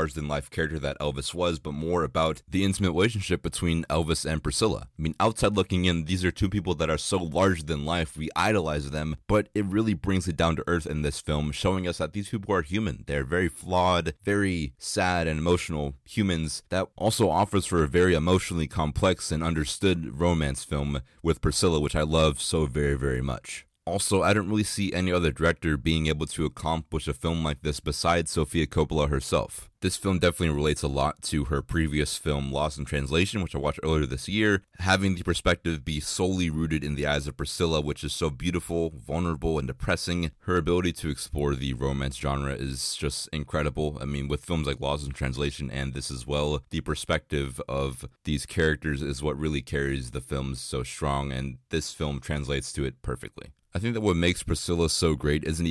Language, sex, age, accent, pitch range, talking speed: English, male, 30-49, American, 75-90 Hz, 205 wpm